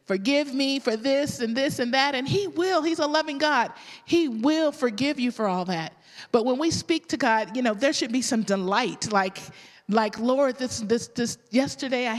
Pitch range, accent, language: 210-265 Hz, American, English